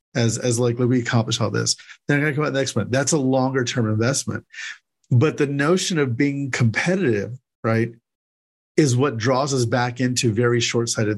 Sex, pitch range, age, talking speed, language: male, 115-135 Hz, 40-59, 175 wpm, English